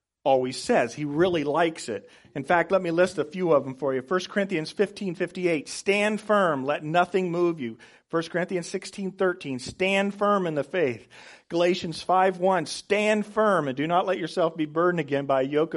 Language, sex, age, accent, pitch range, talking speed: English, male, 40-59, American, 145-195 Hz, 200 wpm